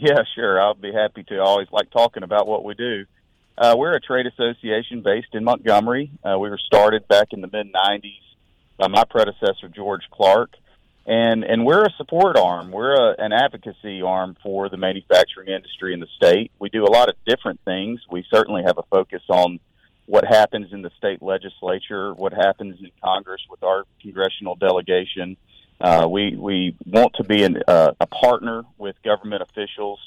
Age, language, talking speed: 40-59, English, 180 wpm